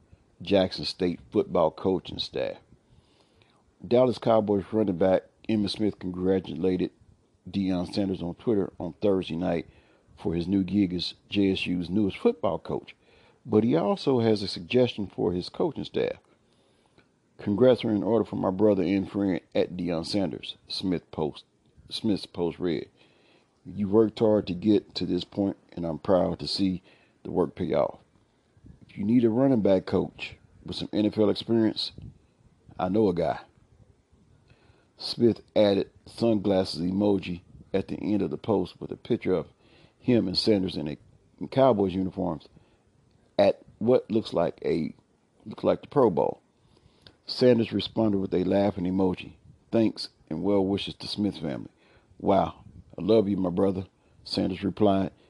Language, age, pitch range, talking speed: English, 50-69, 90-110 Hz, 150 wpm